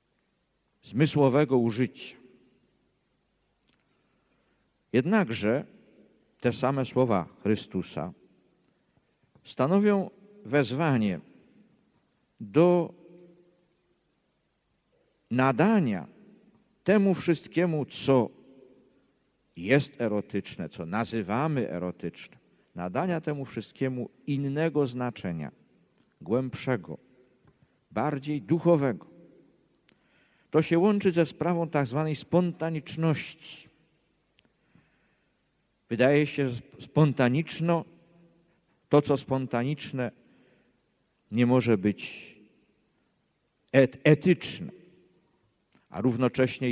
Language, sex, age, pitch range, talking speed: Polish, male, 50-69, 120-160 Hz, 60 wpm